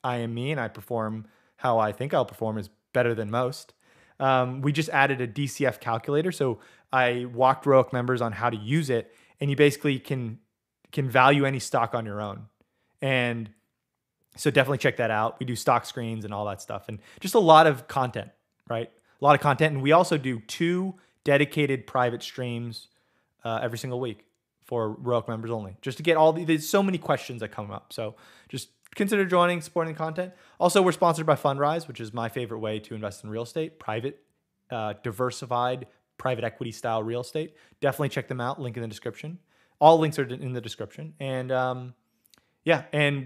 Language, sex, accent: English, male, American